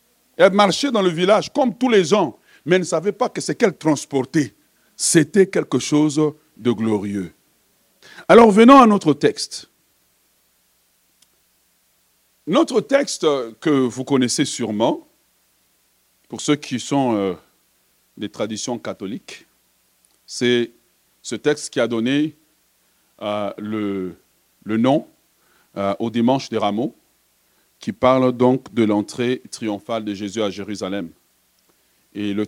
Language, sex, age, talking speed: French, male, 50-69, 120 wpm